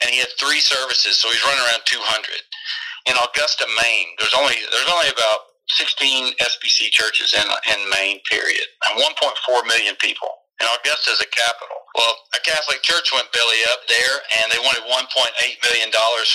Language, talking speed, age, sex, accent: English, 195 wpm, 40-59, male, American